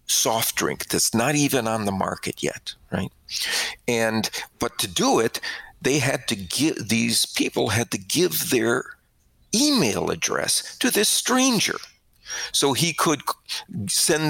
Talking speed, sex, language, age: 145 wpm, male, English, 50-69